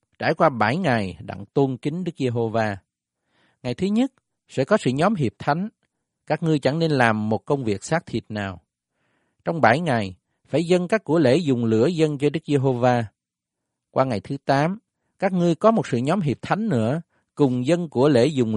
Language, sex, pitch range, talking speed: Vietnamese, male, 115-160 Hz, 195 wpm